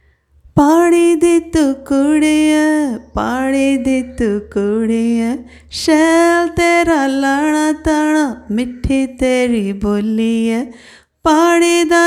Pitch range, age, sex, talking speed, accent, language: 230-335 Hz, 30-49, female, 80 wpm, native, Hindi